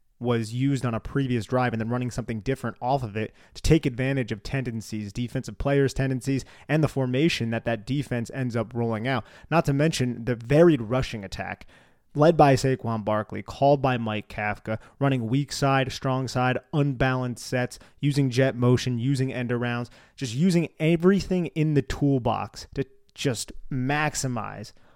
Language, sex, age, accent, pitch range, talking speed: English, male, 30-49, American, 110-135 Hz, 165 wpm